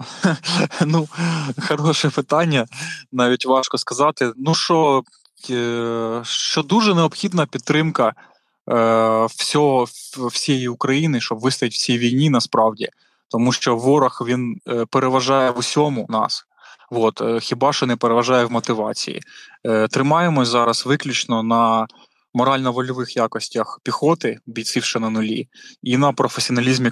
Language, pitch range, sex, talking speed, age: Ukrainian, 115-140 Hz, male, 115 wpm, 20-39